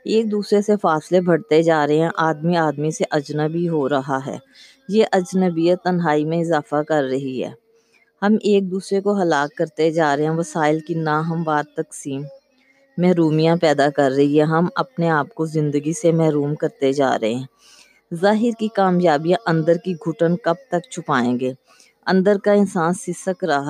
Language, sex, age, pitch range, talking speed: Urdu, female, 20-39, 150-185 Hz, 175 wpm